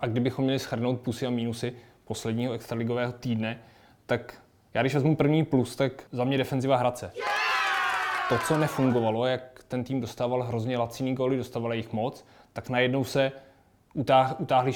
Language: Czech